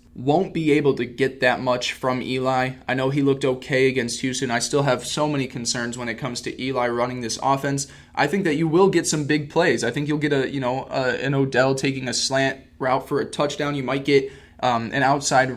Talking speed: 240 wpm